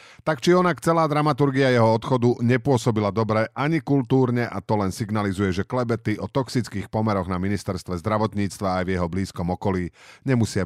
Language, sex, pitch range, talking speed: Slovak, male, 100-125 Hz, 165 wpm